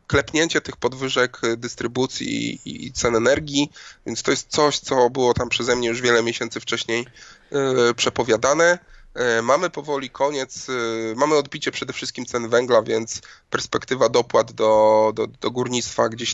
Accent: native